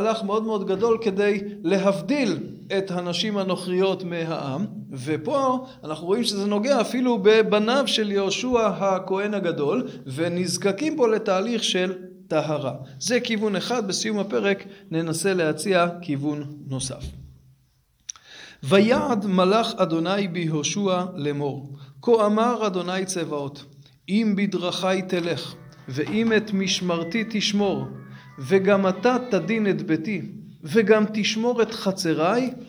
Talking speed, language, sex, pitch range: 110 wpm, Hebrew, male, 165-215 Hz